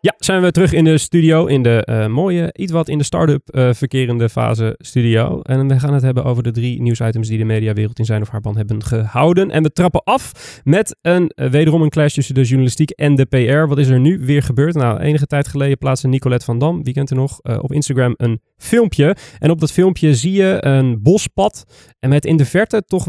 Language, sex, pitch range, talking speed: Dutch, male, 125-155 Hz, 235 wpm